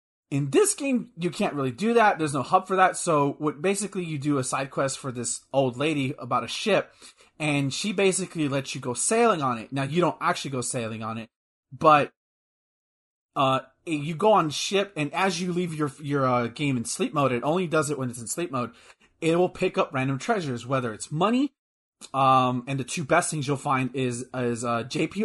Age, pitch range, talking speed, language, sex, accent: 30-49, 130-170 Hz, 220 wpm, English, male, American